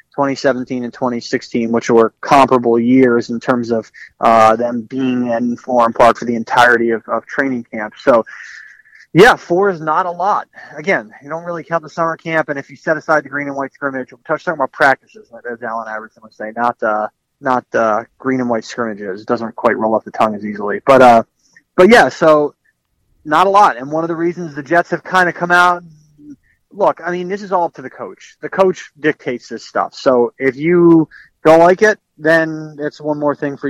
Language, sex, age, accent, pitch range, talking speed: English, male, 30-49, American, 120-160 Hz, 220 wpm